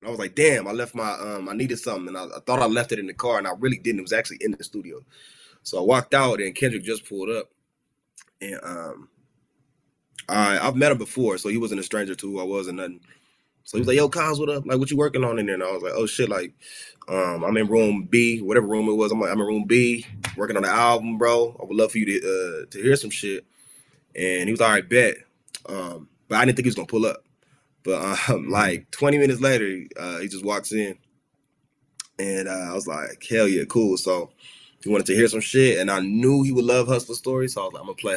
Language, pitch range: English, 100-140 Hz